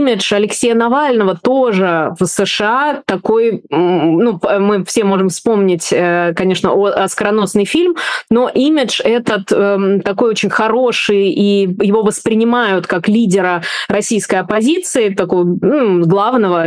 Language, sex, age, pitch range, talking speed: Russian, female, 20-39, 185-220 Hz, 110 wpm